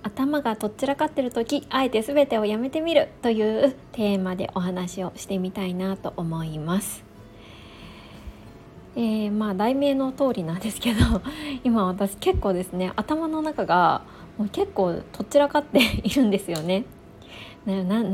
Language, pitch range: Japanese, 180-275 Hz